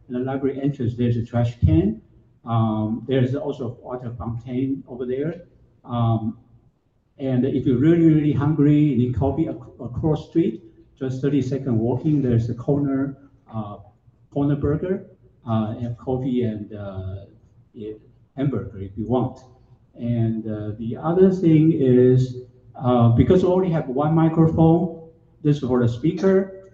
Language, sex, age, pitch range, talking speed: English, male, 50-69, 115-145 Hz, 140 wpm